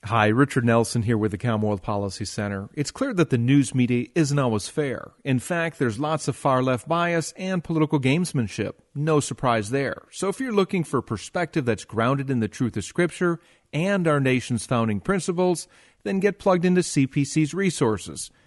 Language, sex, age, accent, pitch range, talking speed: English, male, 40-59, American, 105-150 Hz, 180 wpm